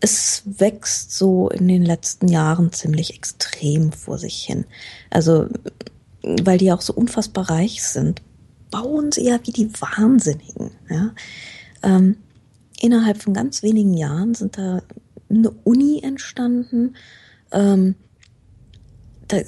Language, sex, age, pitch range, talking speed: German, female, 20-39, 180-220 Hz, 115 wpm